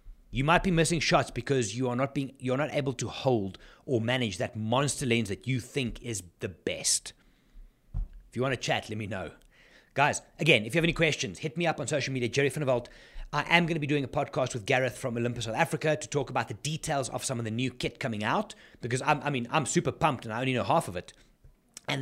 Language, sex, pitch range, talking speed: English, male, 115-150 Hz, 250 wpm